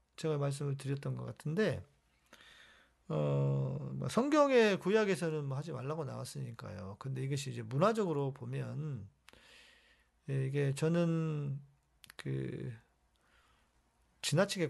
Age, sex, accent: 40-59, male, native